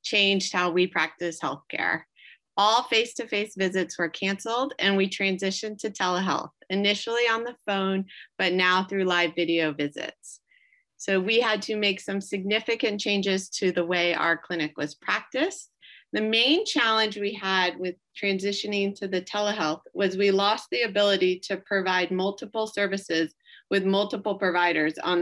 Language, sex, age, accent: English, female, 30-49, American